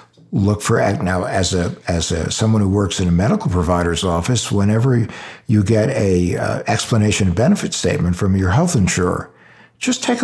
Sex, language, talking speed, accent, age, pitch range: male, English, 175 wpm, American, 60-79, 95-125 Hz